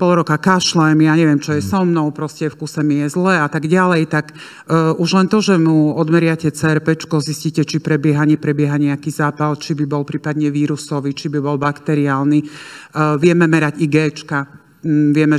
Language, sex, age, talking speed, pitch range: Slovak, male, 50-69, 185 wpm, 145-170 Hz